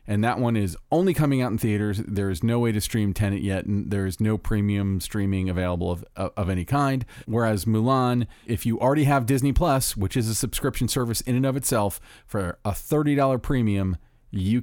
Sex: male